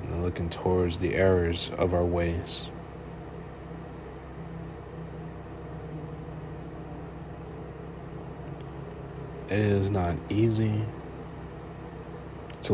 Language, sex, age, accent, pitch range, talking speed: English, male, 20-39, American, 90-115 Hz, 55 wpm